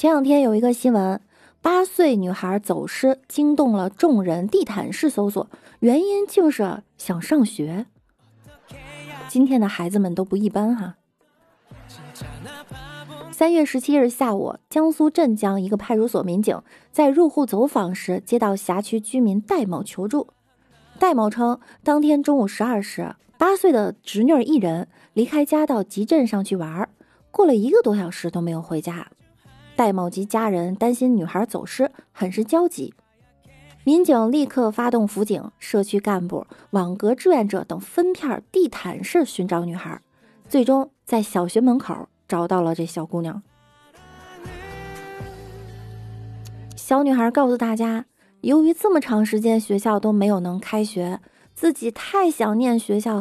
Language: Chinese